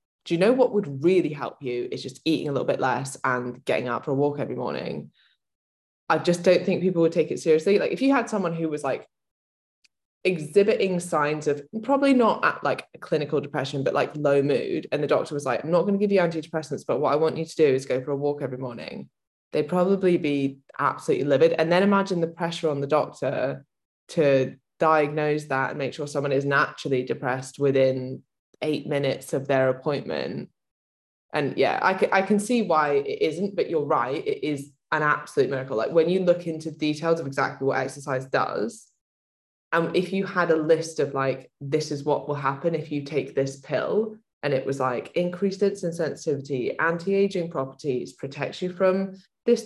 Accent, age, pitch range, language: British, 20-39, 135-180 Hz, English